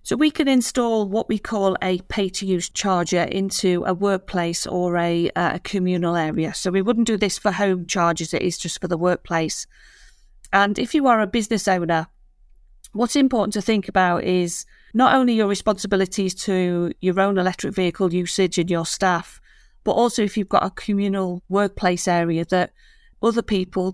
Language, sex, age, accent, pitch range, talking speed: English, female, 40-59, British, 175-205 Hz, 175 wpm